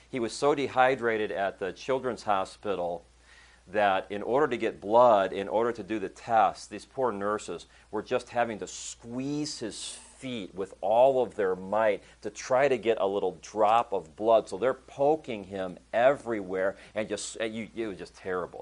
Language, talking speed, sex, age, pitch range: English, 175 wpm, male, 40-59, 90-120 Hz